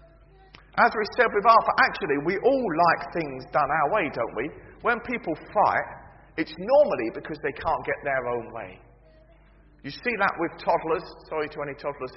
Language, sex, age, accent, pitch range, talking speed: English, male, 40-59, British, 160-265 Hz, 180 wpm